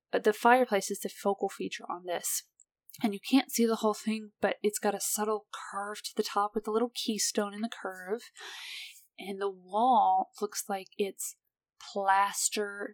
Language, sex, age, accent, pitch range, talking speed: English, female, 20-39, American, 195-240 Hz, 180 wpm